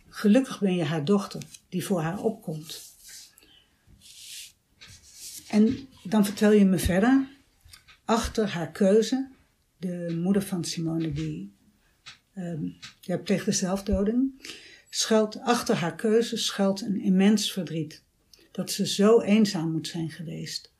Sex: female